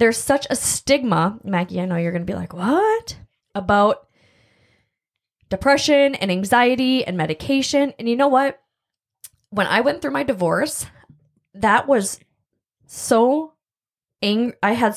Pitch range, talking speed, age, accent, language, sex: 195-260 Hz, 135 wpm, 20-39, American, English, female